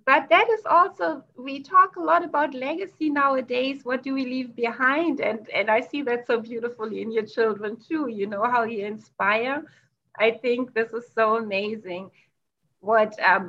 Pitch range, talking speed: 210-245 Hz, 180 wpm